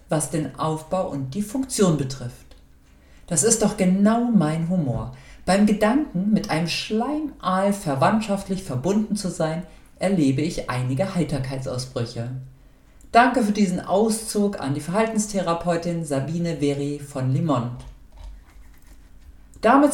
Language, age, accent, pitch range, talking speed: German, 50-69, German, 135-210 Hz, 115 wpm